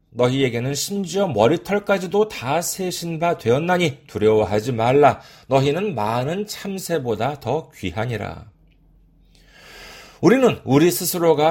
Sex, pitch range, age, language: male, 120-185 Hz, 40-59, Korean